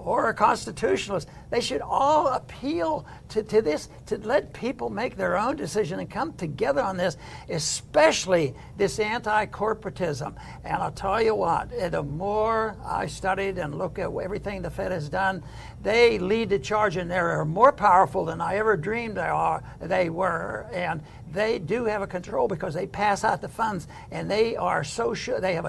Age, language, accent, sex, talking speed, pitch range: 60-79, English, American, male, 180 wpm, 165-205 Hz